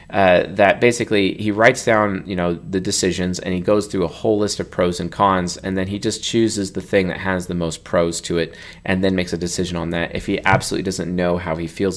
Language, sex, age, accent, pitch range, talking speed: English, male, 30-49, American, 85-105 Hz, 250 wpm